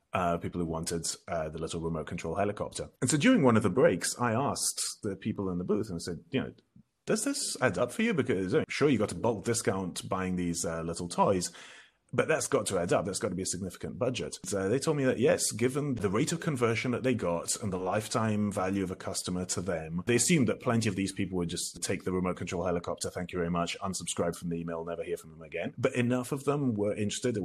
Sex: male